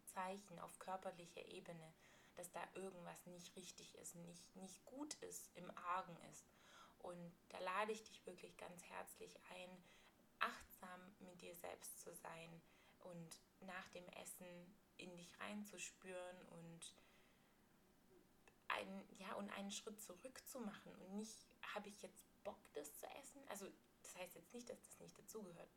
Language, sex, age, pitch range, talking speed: German, female, 20-39, 175-210 Hz, 145 wpm